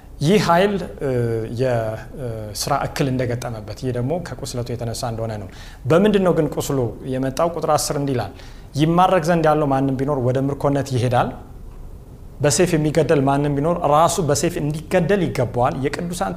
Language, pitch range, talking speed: Amharic, 120-165 Hz, 120 wpm